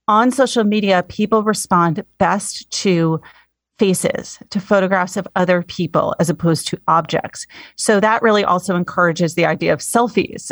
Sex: female